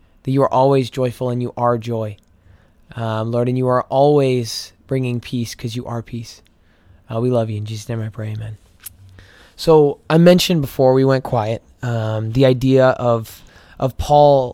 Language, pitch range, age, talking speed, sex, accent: English, 115-140 Hz, 20-39, 180 wpm, male, American